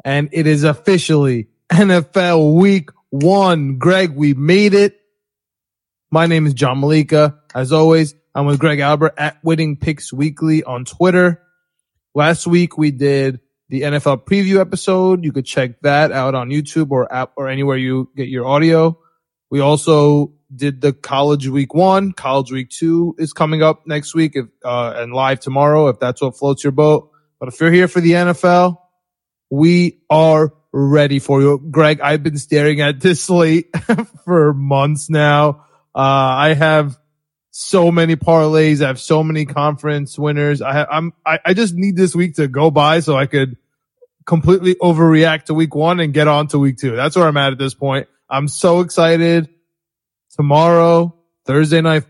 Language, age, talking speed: English, 20-39, 175 wpm